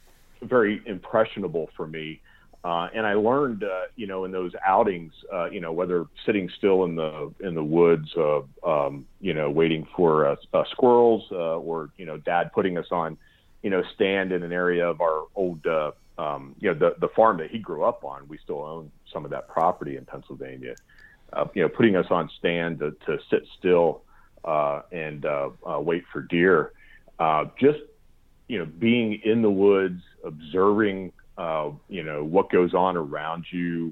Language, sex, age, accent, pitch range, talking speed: English, male, 40-59, American, 80-100 Hz, 190 wpm